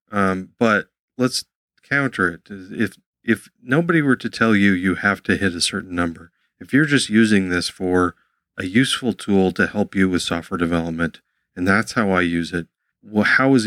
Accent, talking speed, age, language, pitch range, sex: American, 190 wpm, 40-59, English, 90-115 Hz, male